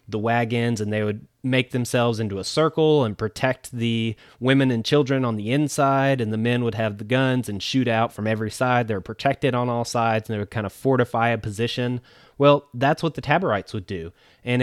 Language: English